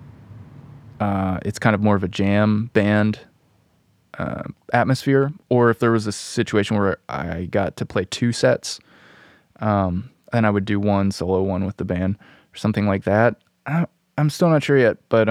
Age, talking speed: 20-39, 175 wpm